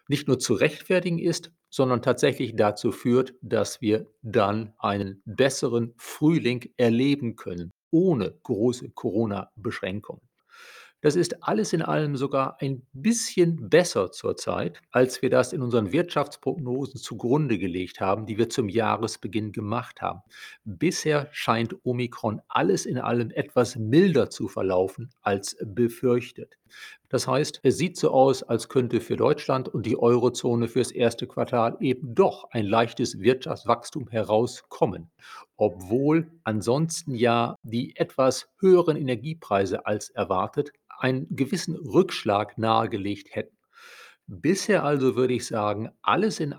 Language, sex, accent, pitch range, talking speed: German, male, German, 115-145 Hz, 130 wpm